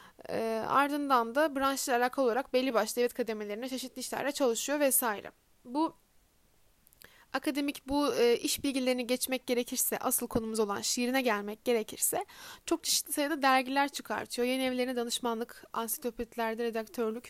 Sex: female